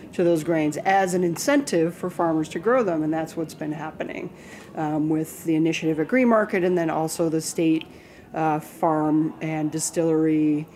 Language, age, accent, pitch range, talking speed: English, 30-49, American, 160-185 Hz, 180 wpm